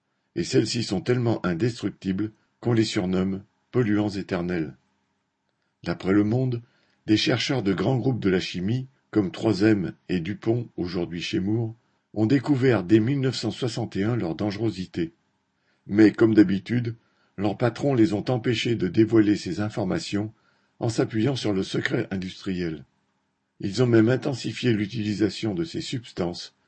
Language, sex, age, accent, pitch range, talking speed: French, male, 50-69, French, 95-120 Hz, 135 wpm